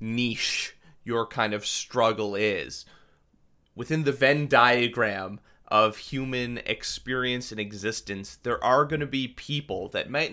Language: English